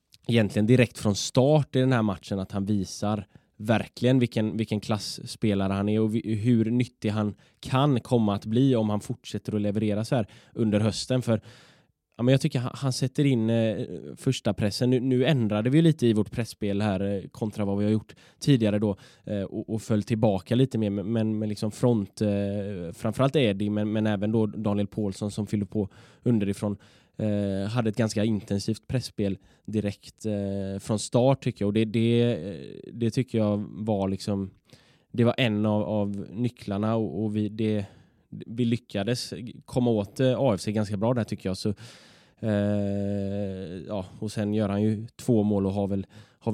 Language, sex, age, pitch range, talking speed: Swedish, male, 10-29, 105-120 Hz, 185 wpm